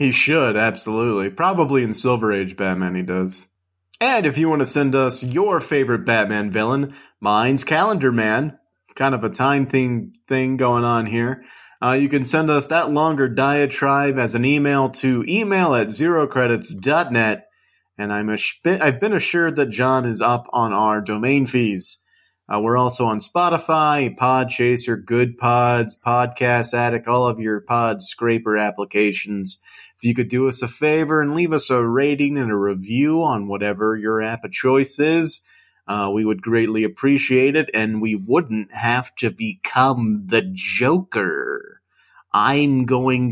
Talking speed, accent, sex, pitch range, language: 160 wpm, American, male, 110-140 Hz, English